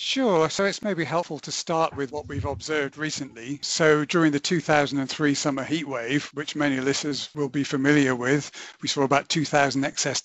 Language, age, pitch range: English, 50-69, 135-155 Hz